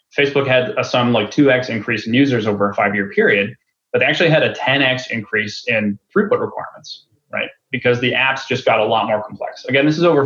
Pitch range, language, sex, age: 115-145 Hz, English, male, 20-39